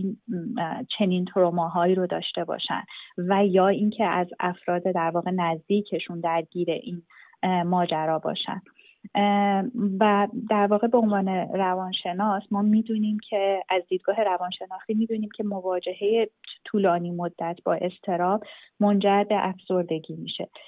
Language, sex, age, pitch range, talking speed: Persian, female, 30-49, 185-215 Hz, 120 wpm